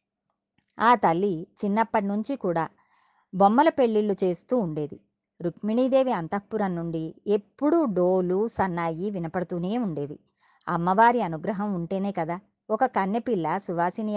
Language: Telugu